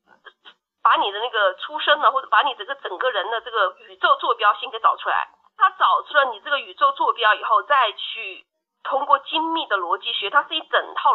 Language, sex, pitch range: Chinese, female, 225-355 Hz